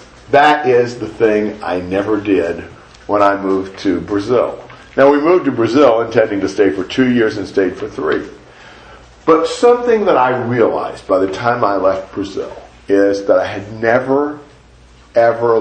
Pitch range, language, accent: 100-145 Hz, English, American